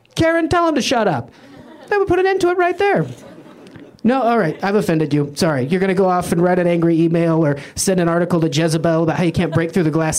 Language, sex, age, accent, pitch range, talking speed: English, male, 30-49, American, 150-220 Hz, 270 wpm